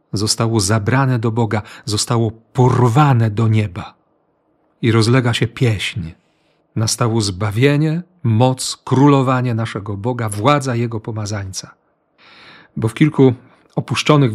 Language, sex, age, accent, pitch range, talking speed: Polish, male, 40-59, native, 115-150 Hz, 105 wpm